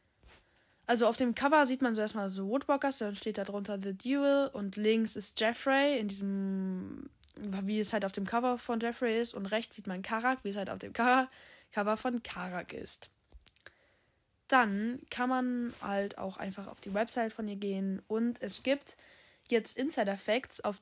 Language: German